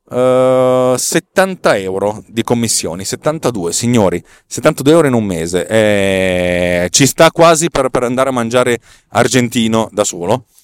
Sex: male